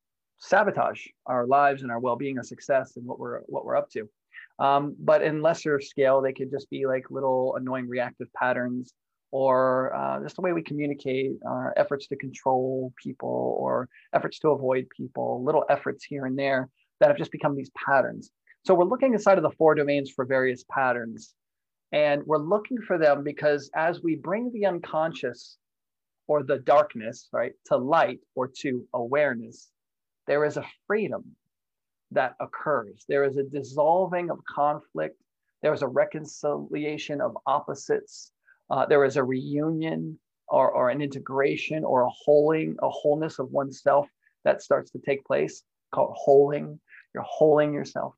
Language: English